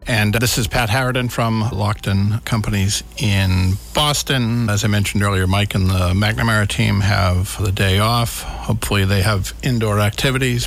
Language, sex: English, male